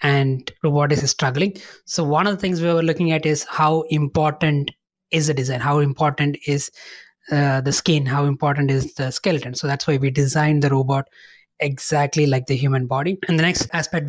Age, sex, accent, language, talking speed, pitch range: 20-39, male, Indian, English, 195 wpm, 140-160 Hz